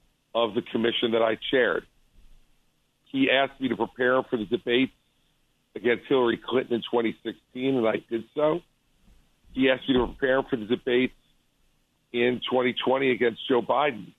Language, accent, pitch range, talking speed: English, American, 115-130 Hz, 150 wpm